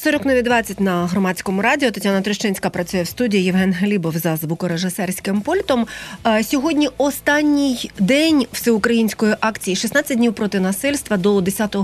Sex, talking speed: female, 125 wpm